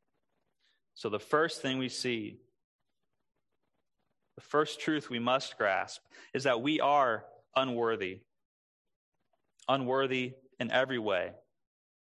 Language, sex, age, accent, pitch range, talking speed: English, male, 20-39, American, 130-165 Hz, 105 wpm